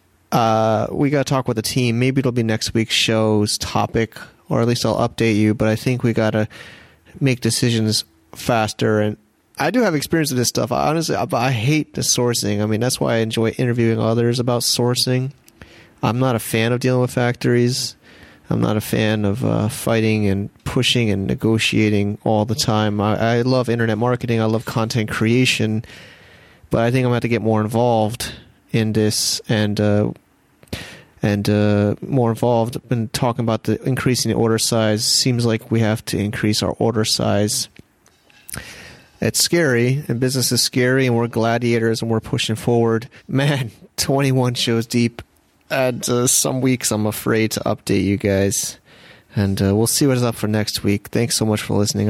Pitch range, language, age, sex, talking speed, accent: 105-125 Hz, English, 30-49, male, 190 wpm, American